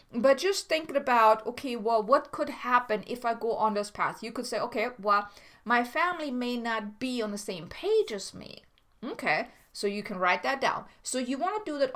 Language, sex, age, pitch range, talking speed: English, female, 30-49, 210-280 Hz, 220 wpm